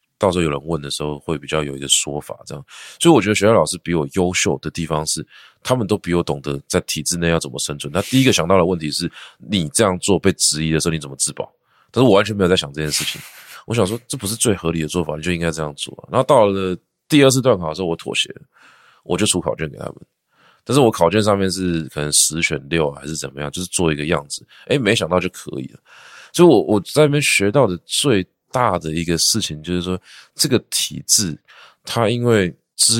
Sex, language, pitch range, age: male, Chinese, 80-100 Hz, 20-39